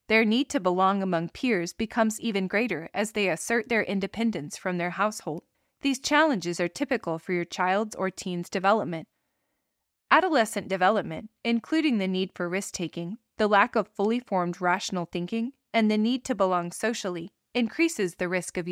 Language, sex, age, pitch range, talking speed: English, female, 20-39, 185-235 Hz, 165 wpm